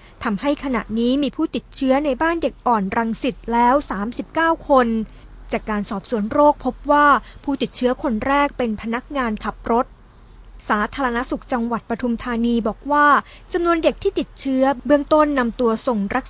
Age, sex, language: 20-39, female, Thai